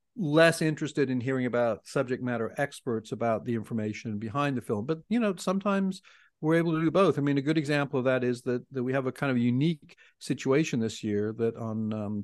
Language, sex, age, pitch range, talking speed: English, male, 50-69, 120-150 Hz, 220 wpm